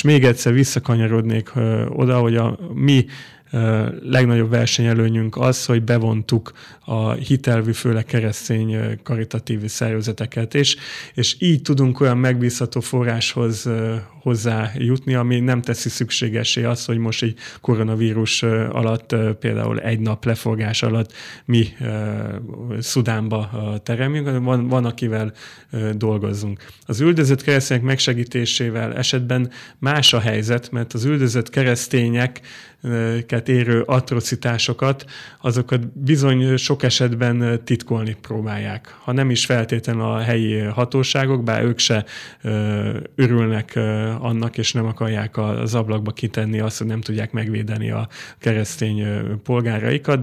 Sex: male